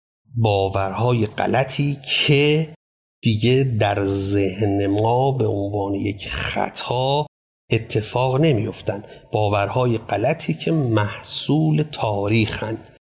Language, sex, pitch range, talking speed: Persian, male, 100-120 Hz, 80 wpm